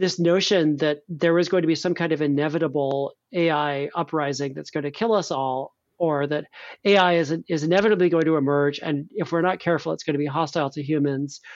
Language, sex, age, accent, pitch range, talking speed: English, male, 40-59, American, 150-185 Hz, 215 wpm